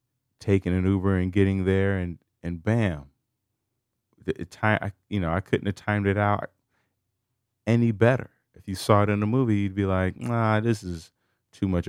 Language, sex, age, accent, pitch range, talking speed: English, male, 30-49, American, 100-125 Hz, 175 wpm